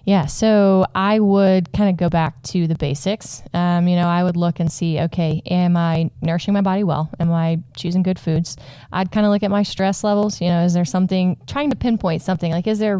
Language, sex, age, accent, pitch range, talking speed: English, female, 10-29, American, 165-195 Hz, 240 wpm